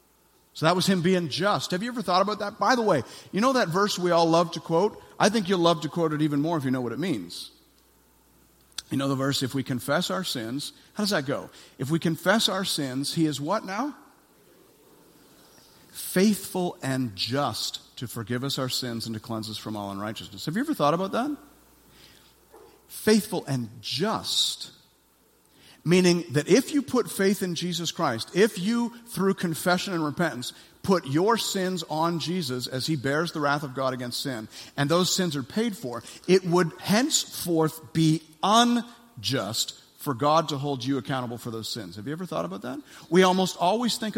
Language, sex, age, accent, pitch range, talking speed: English, male, 50-69, American, 135-190 Hz, 195 wpm